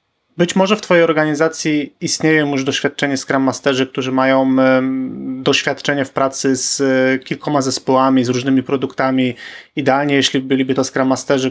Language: Polish